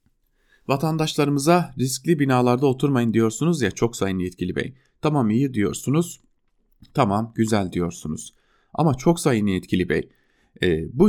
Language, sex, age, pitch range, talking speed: German, male, 30-49, 95-130 Hz, 125 wpm